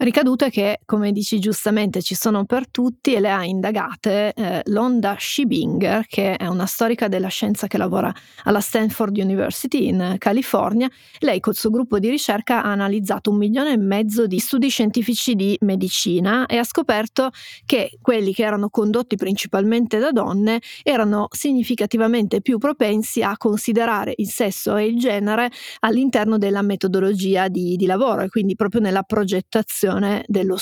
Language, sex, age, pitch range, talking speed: Italian, female, 30-49, 200-235 Hz, 155 wpm